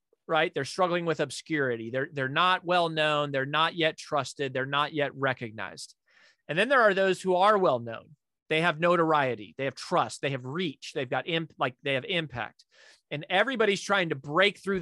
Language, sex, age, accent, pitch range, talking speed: English, male, 30-49, American, 135-180 Hz, 195 wpm